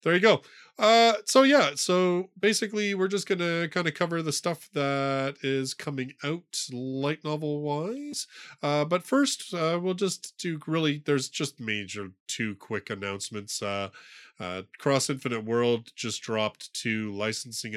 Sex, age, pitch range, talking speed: male, 20-39, 110-160 Hz, 150 wpm